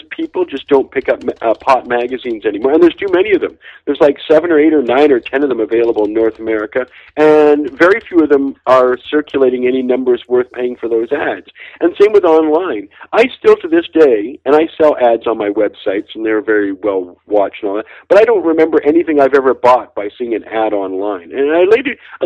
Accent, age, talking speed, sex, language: American, 50-69, 220 wpm, male, English